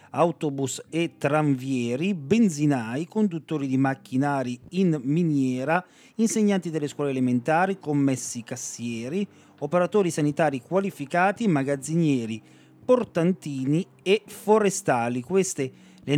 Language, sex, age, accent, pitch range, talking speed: Italian, male, 40-59, native, 135-195 Hz, 90 wpm